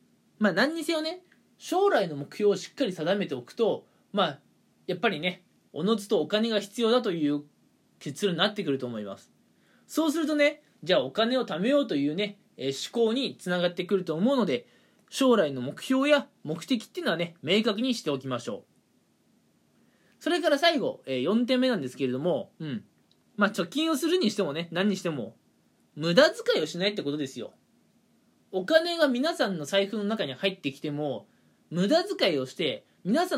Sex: male